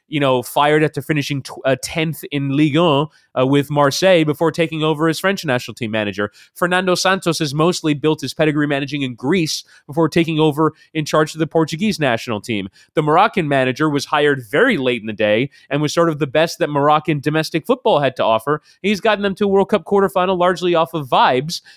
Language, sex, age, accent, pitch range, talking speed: English, male, 30-49, American, 140-175 Hz, 210 wpm